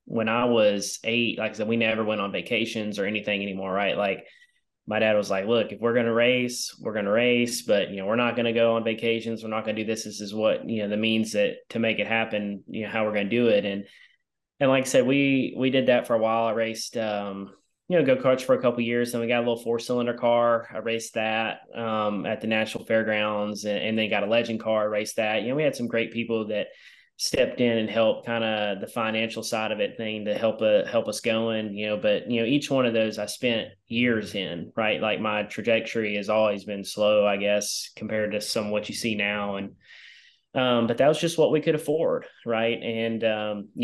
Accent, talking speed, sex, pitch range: American, 255 wpm, male, 105-120 Hz